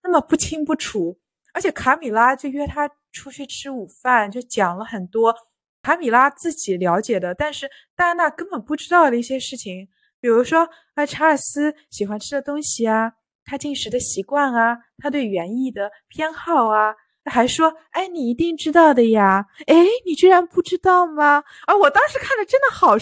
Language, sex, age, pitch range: Chinese, female, 20-39, 200-295 Hz